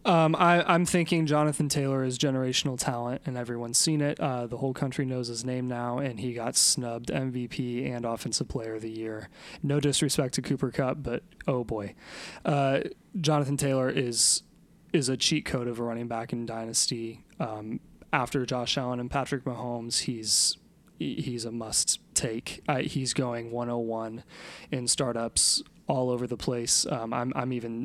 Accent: American